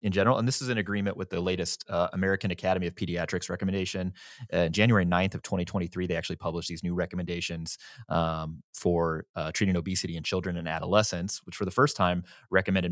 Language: English